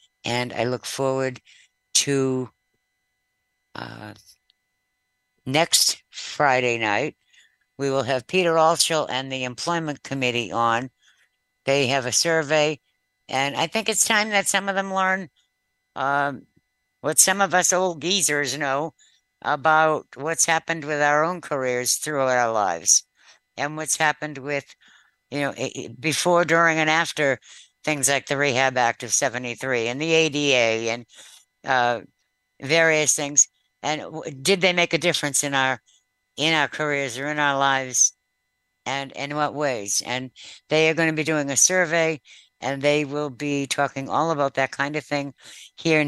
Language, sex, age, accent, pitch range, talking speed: English, female, 60-79, American, 125-155 Hz, 150 wpm